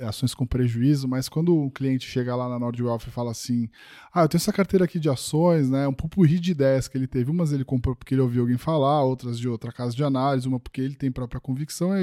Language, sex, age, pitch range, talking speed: English, male, 10-29, 135-185 Hz, 250 wpm